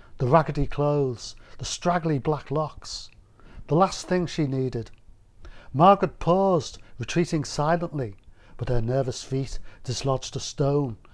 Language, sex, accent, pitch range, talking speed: English, male, British, 110-150 Hz, 125 wpm